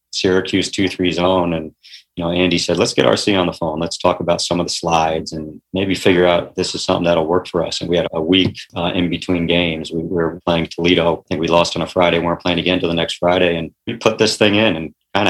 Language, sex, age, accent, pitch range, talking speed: English, male, 40-59, American, 85-95 Hz, 270 wpm